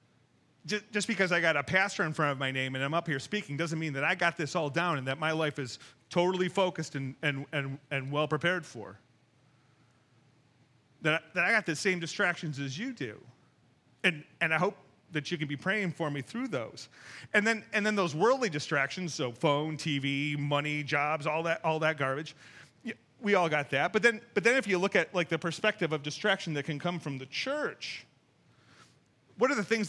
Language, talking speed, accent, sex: English, 205 wpm, American, male